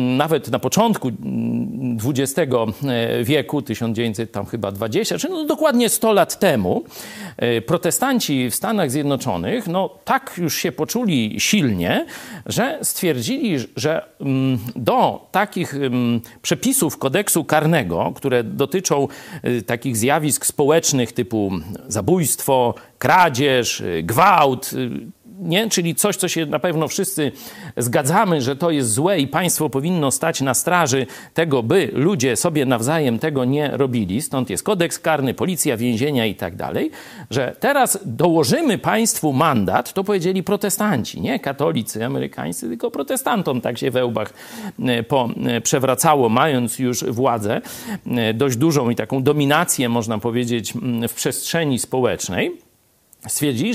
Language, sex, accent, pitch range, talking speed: Polish, male, native, 125-180 Hz, 120 wpm